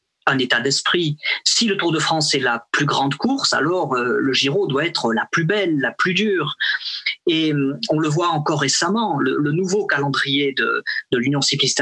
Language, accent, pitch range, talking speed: French, French, 145-190 Hz, 205 wpm